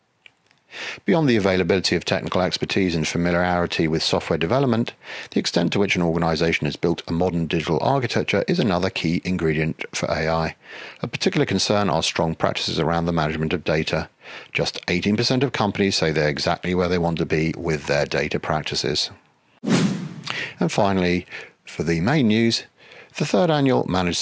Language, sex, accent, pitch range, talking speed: English, male, British, 80-110 Hz, 165 wpm